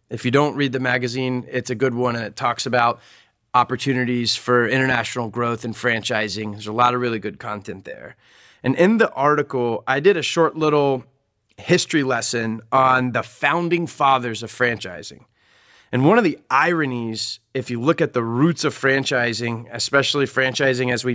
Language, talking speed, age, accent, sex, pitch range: English, 180 wpm, 30-49, American, male, 120-140 Hz